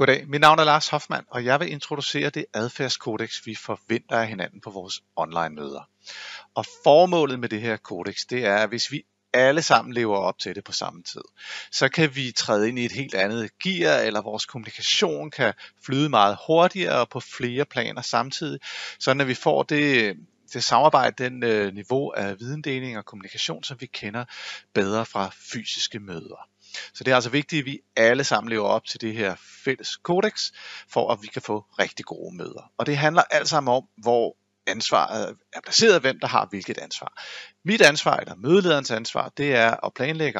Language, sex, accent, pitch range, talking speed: Danish, male, native, 110-145 Hz, 190 wpm